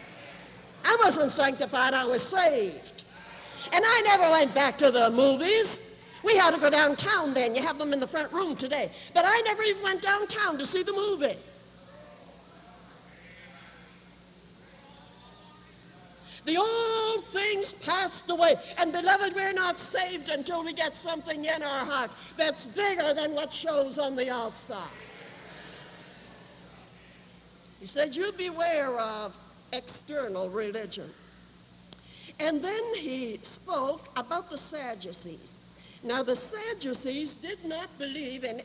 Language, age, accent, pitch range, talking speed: English, 60-79, American, 250-350 Hz, 130 wpm